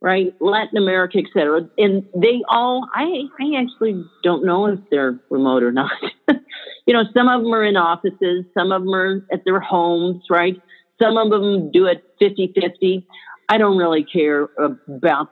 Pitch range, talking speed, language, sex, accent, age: 175-225 Hz, 175 wpm, English, female, American, 50-69